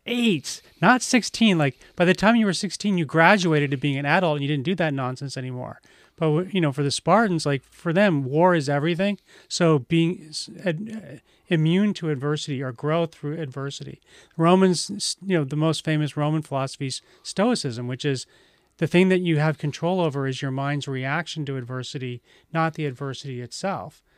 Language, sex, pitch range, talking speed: English, male, 140-175 Hz, 180 wpm